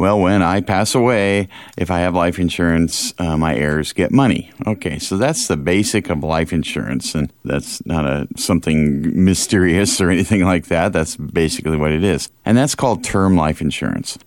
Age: 40-59